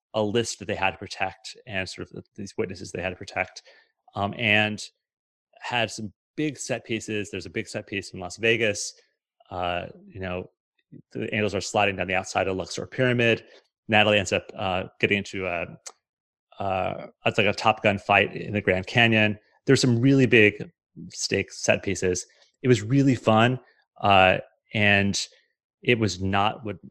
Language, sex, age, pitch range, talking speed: English, male, 30-49, 100-120 Hz, 170 wpm